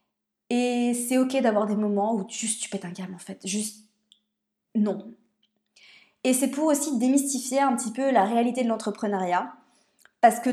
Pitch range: 215-270 Hz